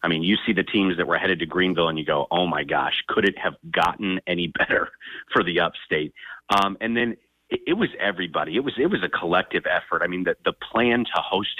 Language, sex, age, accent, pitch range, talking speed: English, male, 30-49, American, 90-105 Hz, 245 wpm